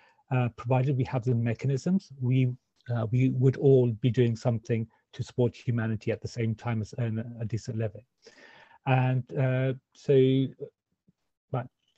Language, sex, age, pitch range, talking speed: English, male, 40-59, 115-140 Hz, 155 wpm